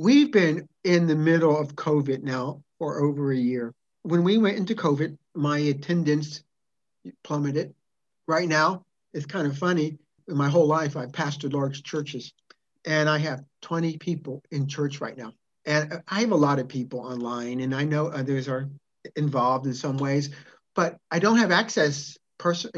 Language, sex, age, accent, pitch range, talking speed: English, male, 50-69, American, 145-175 Hz, 175 wpm